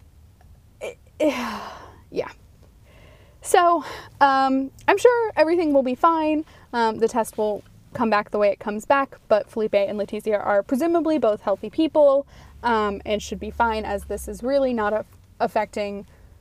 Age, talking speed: 20-39, 145 wpm